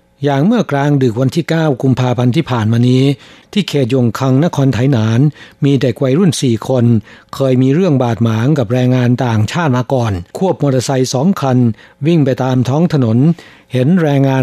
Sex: male